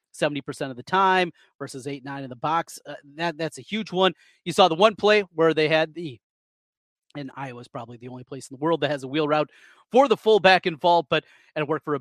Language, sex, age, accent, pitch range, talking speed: English, male, 30-49, American, 145-200 Hz, 240 wpm